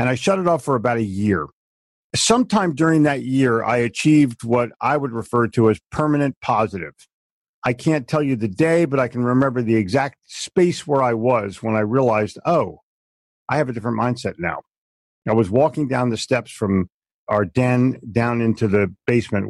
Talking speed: 190 wpm